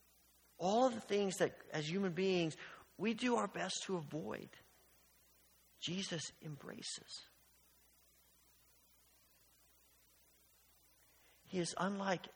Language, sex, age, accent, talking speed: English, male, 50-69, American, 90 wpm